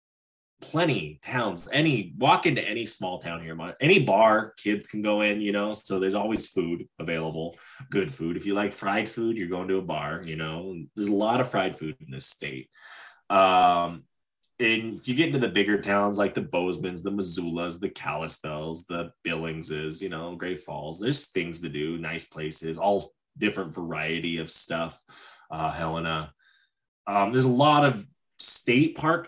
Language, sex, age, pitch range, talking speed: English, male, 20-39, 85-125 Hz, 180 wpm